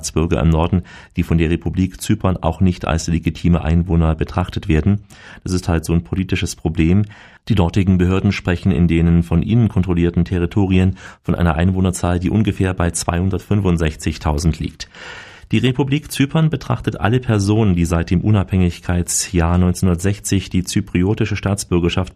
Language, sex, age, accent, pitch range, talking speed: German, male, 40-59, German, 85-105 Hz, 145 wpm